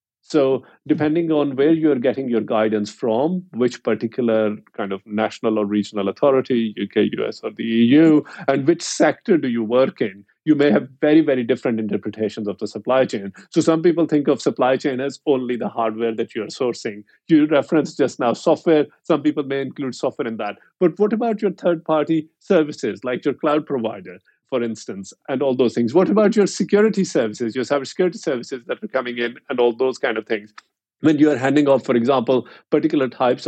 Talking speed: 195 wpm